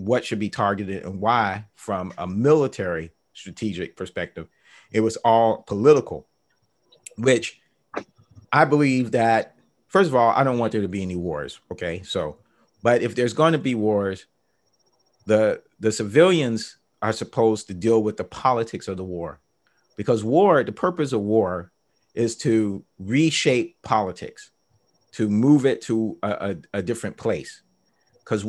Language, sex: English, male